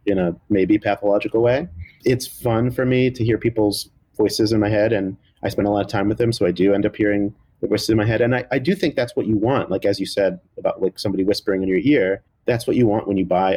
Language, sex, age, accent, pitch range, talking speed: English, male, 30-49, American, 90-110 Hz, 280 wpm